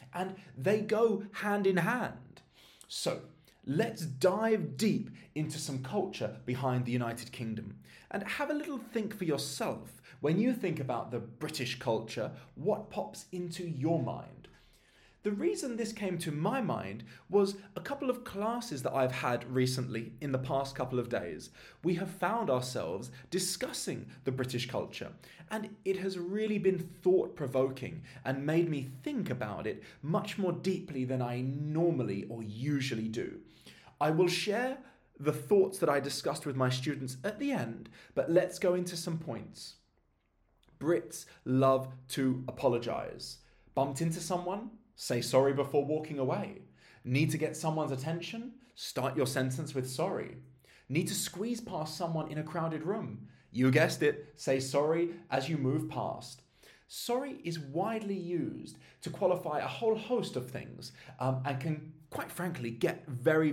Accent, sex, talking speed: British, male, 155 wpm